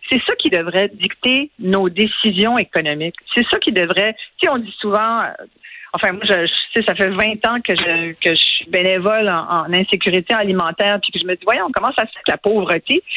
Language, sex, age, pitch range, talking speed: French, female, 50-69, 185-255 Hz, 235 wpm